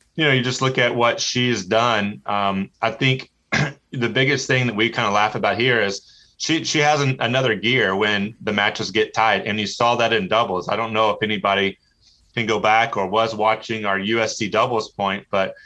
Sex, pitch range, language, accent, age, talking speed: male, 105-120 Hz, English, American, 30-49, 215 wpm